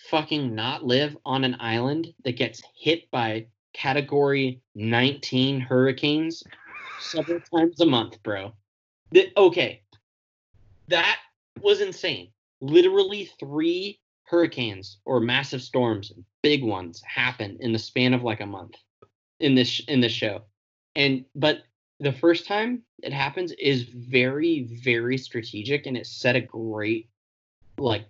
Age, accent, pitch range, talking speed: 20-39, American, 110-140 Hz, 130 wpm